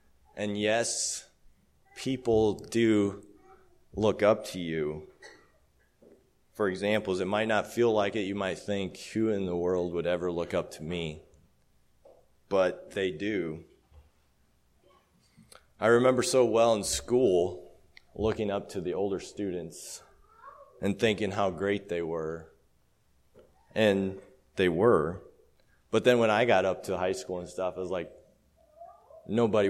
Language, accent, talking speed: English, American, 135 wpm